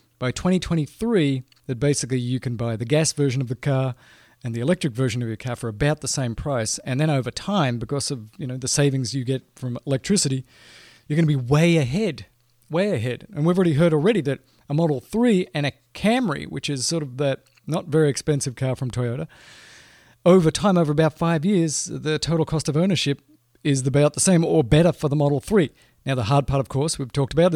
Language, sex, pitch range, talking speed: English, male, 130-160 Hz, 220 wpm